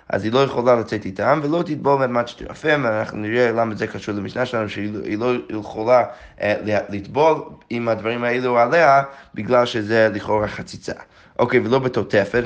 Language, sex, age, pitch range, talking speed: Hebrew, male, 20-39, 105-135 Hz, 170 wpm